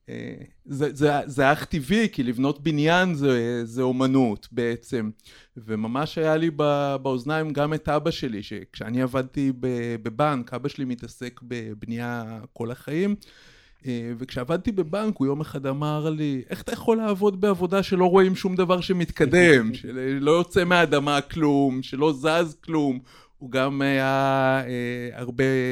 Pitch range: 120-150 Hz